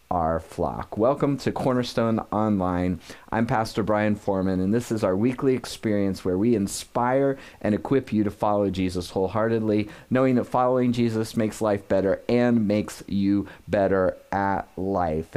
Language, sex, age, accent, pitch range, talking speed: English, male, 30-49, American, 95-120 Hz, 150 wpm